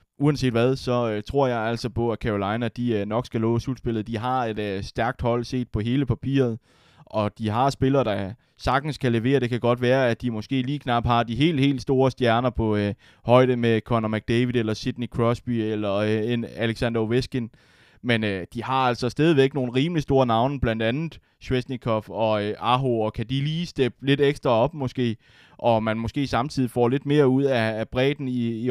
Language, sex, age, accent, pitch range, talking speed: Danish, male, 20-39, native, 110-130 Hz, 210 wpm